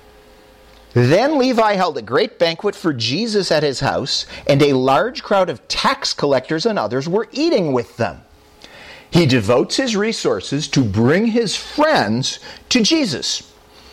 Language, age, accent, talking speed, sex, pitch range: English, 50-69, American, 145 wpm, male, 125-205 Hz